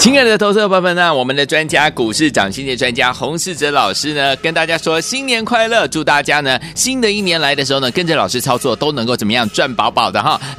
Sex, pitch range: male, 140-205 Hz